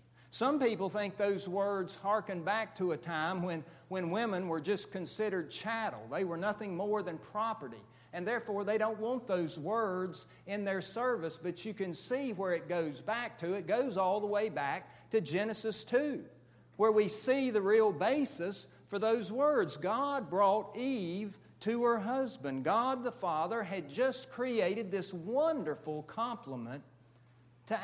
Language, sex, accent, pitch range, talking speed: English, male, American, 135-220 Hz, 165 wpm